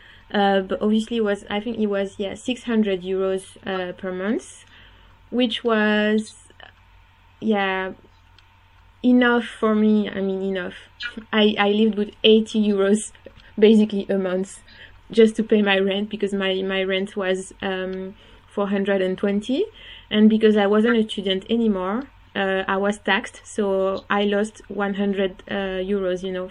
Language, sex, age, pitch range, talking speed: English, female, 20-39, 190-215 Hz, 145 wpm